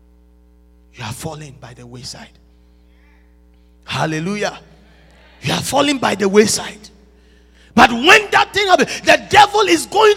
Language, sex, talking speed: English, male, 130 wpm